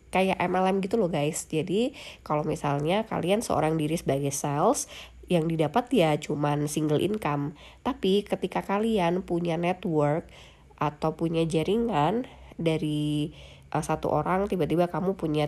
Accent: native